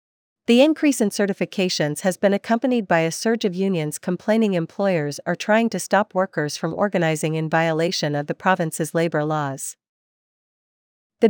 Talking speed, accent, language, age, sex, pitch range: 155 wpm, American, English, 40-59, female, 160-200 Hz